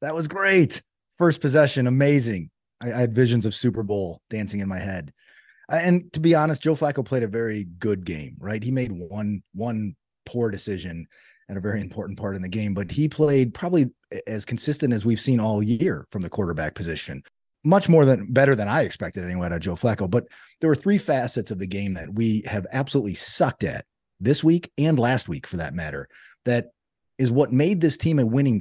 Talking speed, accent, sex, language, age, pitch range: 210 wpm, American, male, English, 30-49, 105-145 Hz